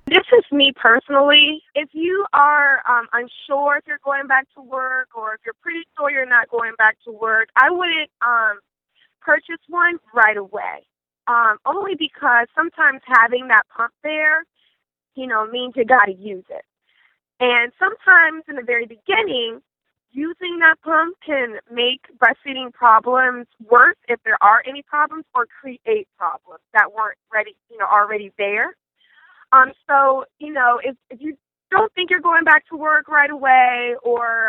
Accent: American